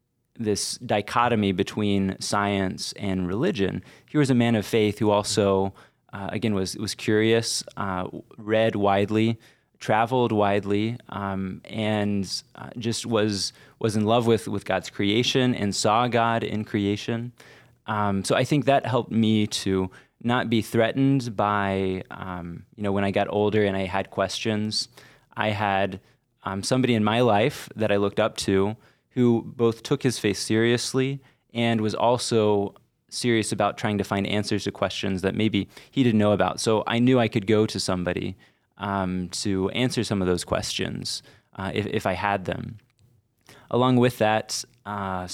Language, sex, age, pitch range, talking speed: English, male, 20-39, 100-115 Hz, 165 wpm